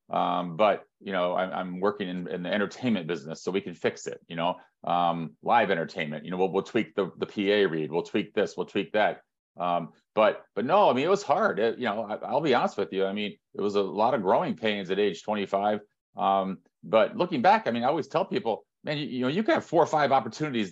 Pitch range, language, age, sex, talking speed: 95-120 Hz, English, 40-59, male, 250 wpm